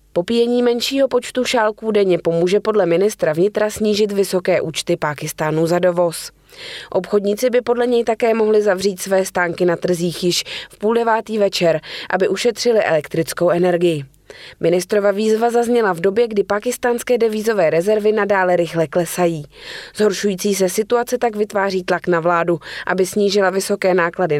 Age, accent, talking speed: 20-39, native, 145 wpm